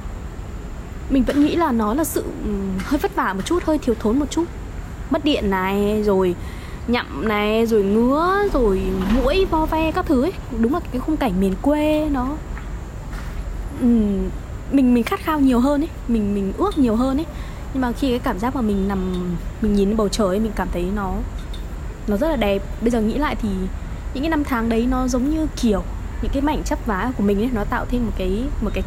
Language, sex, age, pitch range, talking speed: Vietnamese, female, 20-39, 200-280 Hz, 215 wpm